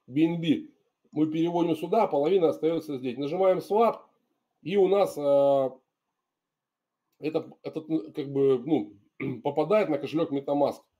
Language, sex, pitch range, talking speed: Russian, male, 140-190 Hz, 120 wpm